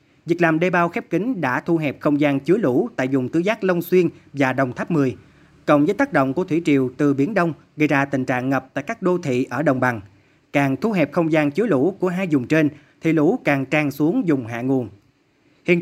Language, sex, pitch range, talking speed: Vietnamese, male, 135-170 Hz, 245 wpm